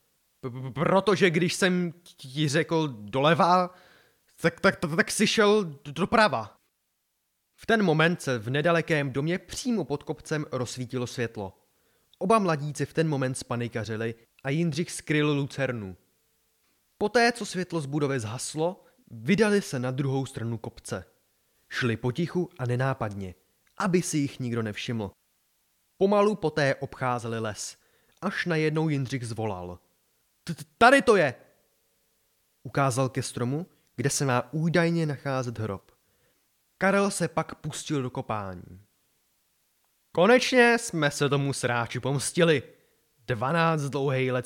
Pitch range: 130-180 Hz